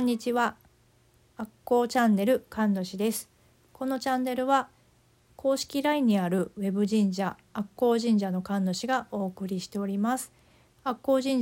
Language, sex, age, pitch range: Japanese, female, 40-59, 190-240 Hz